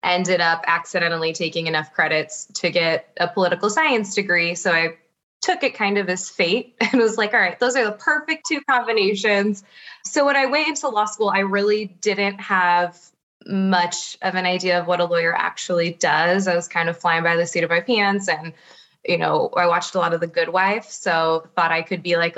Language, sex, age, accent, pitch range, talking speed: English, female, 20-39, American, 170-215 Hz, 215 wpm